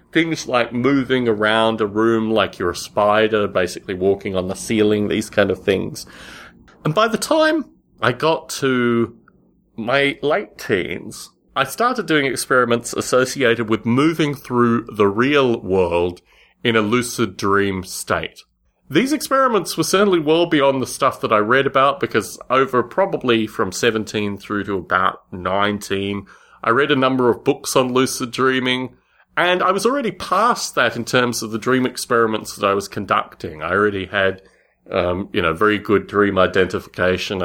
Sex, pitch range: male, 95-125 Hz